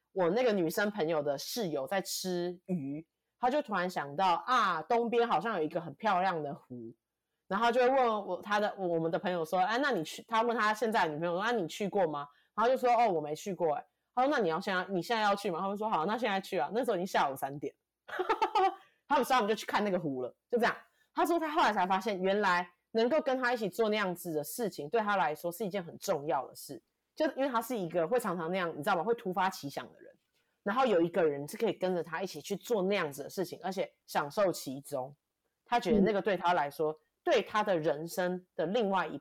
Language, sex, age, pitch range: Chinese, female, 30-49, 165-225 Hz